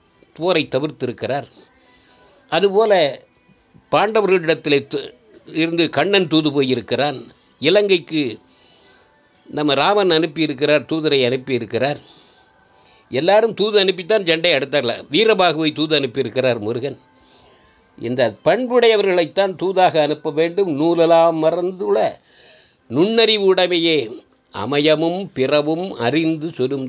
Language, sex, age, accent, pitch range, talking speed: Tamil, male, 60-79, native, 130-180 Hz, 80 wpm